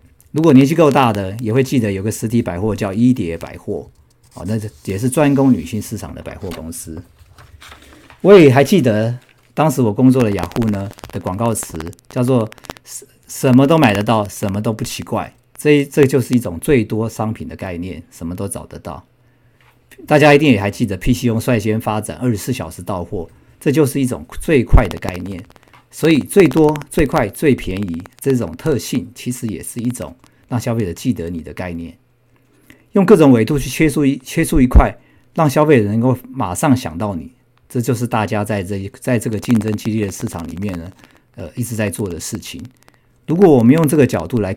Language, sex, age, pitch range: Chinese, male, 50-69, 100-130 Hz